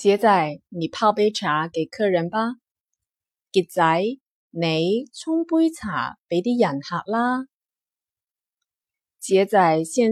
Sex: female